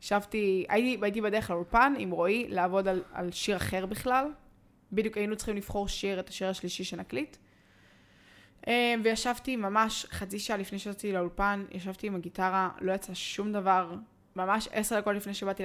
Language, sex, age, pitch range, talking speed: Hebrew, female, 20-39, 185-215 Hz, 155 wpm